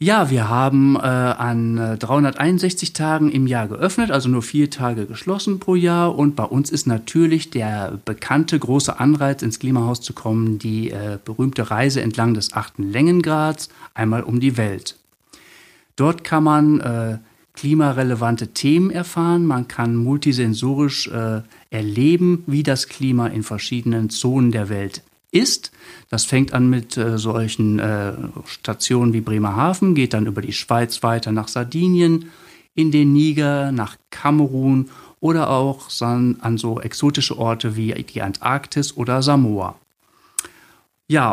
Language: German